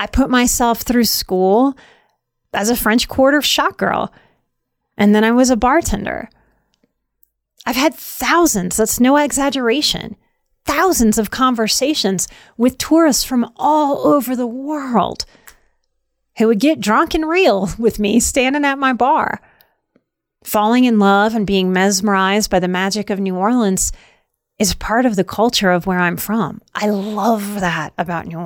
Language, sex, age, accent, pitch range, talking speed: English, female, 30-49, American, 205-260 Hz, 150 wpm